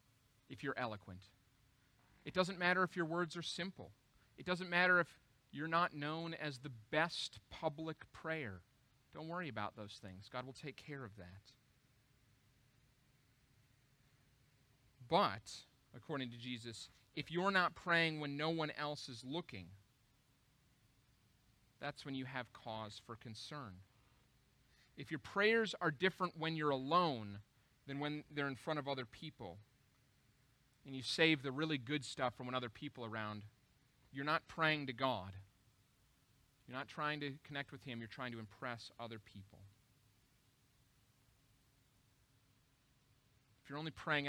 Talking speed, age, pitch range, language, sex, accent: 145 wpm, 30-49, 115-145 Hz, English, male, American